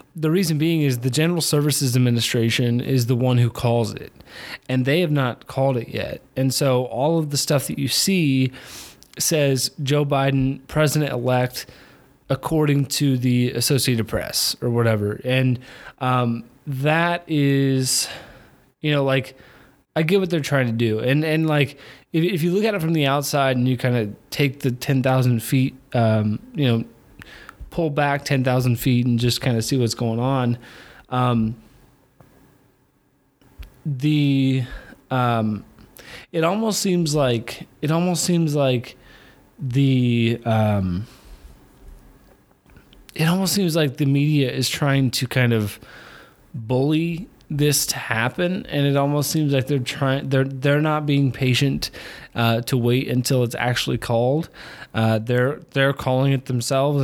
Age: 20-39